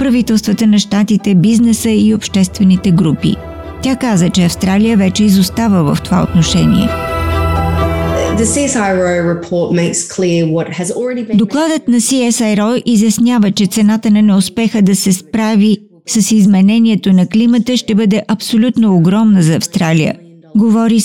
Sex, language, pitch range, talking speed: female, Bulgarian, 185-225 Hz, 110 wpm